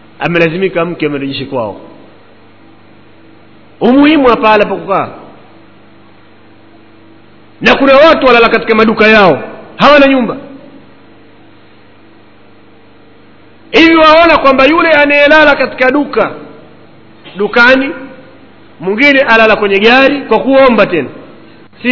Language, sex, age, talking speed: Swahili, male, 50-69, 90 wpm